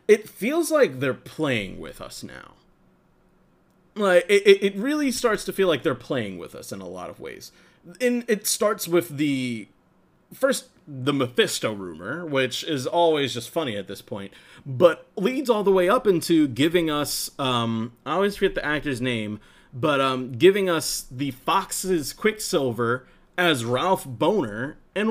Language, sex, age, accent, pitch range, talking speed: English, male, 30-49, American, 125-195 Hz, 165 wpm